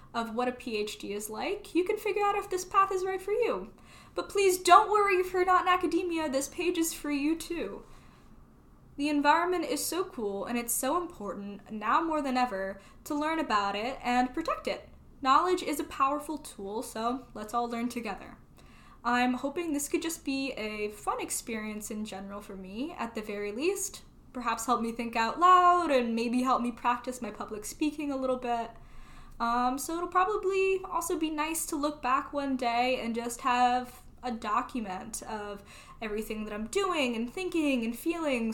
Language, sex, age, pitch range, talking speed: English, female, 10-29, 230-335 Hz, 190 wpm